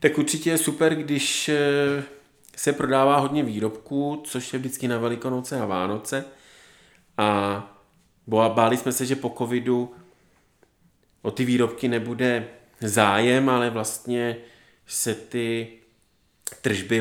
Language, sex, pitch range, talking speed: Czech, male, 115-125 Hz, 115 wpm